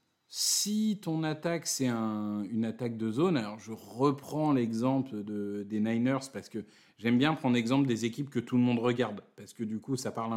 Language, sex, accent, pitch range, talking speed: French, male, French, 115-150 Hz, 205 wpm